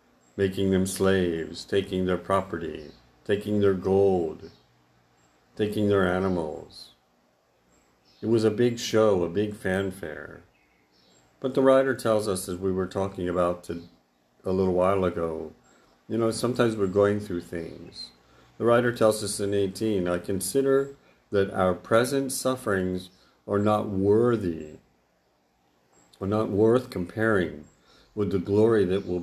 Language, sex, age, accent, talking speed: English, male, 50-69, American, 135 wpm